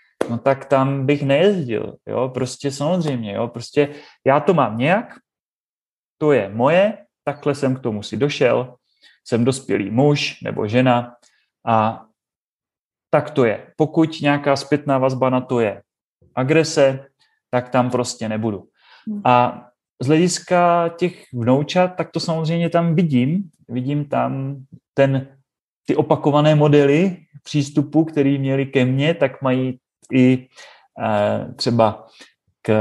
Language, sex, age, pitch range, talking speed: Czech, male, 30-49, 125-155 Hz, 130 wpm